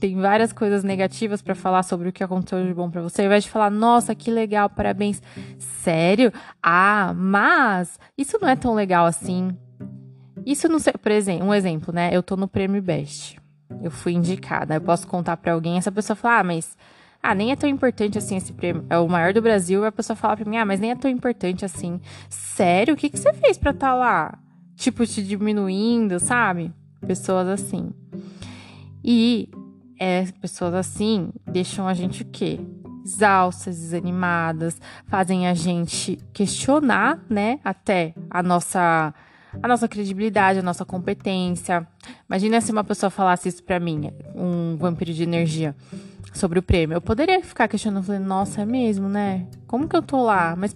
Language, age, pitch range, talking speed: Portuguese, 10-29, 175-220 Hz, 180 wpm